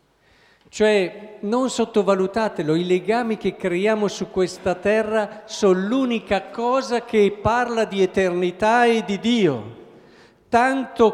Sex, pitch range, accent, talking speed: male, 175-225 Hz, native, 115 wpm